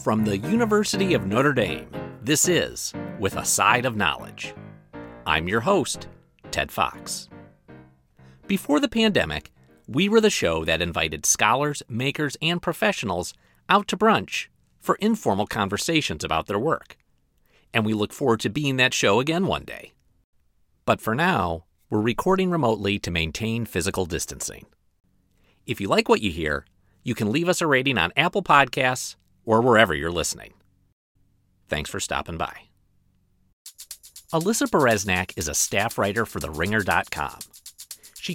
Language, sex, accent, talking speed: English, male, American, 145 wpm